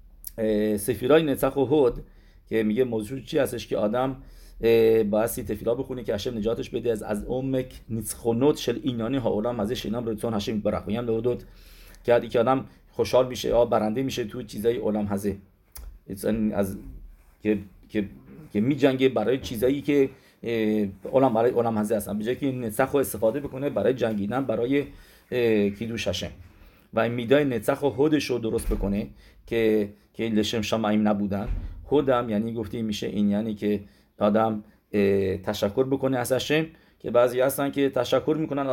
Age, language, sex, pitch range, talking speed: 40-59, English, male, 105-125 Hz, 155 wpm